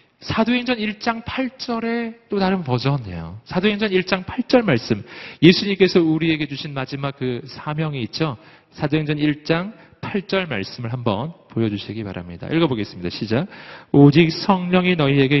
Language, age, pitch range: Korean, 40-59, 150-225 Hz